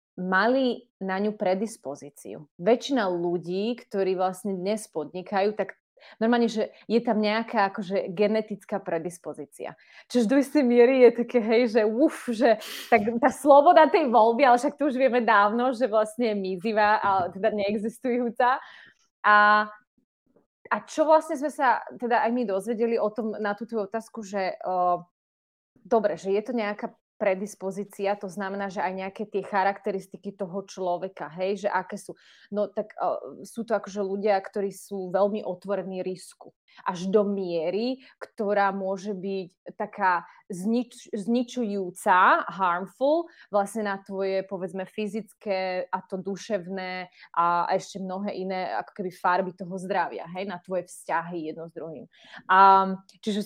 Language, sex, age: Slovak, female, 20-39